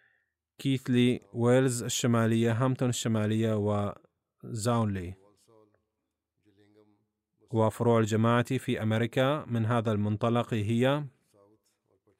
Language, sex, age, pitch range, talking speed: Arabic, male, 30-49, 110-125 Hz, 70 wpm